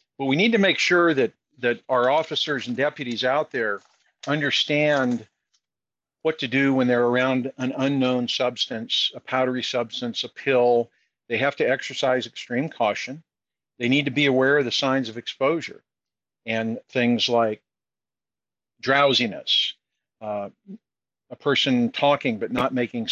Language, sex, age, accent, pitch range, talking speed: English, male, 50-69, American, 120-145 Hz, 145 wpm